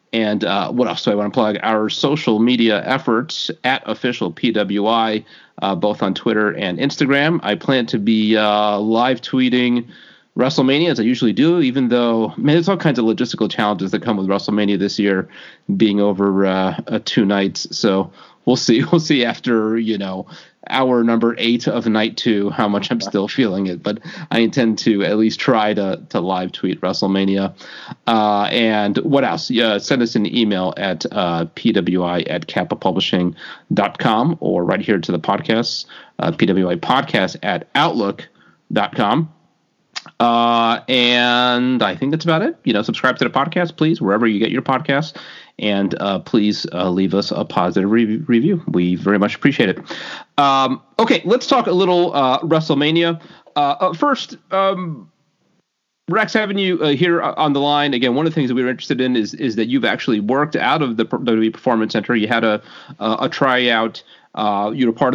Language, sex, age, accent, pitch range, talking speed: English, male, 30-49, American, 105-140 Hz, 180 wpm